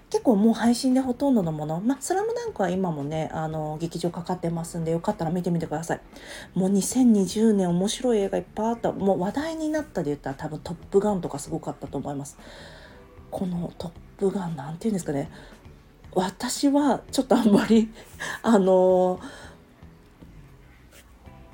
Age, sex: 40-59, female